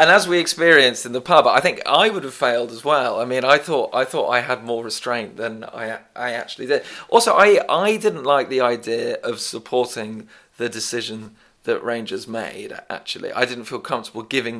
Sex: male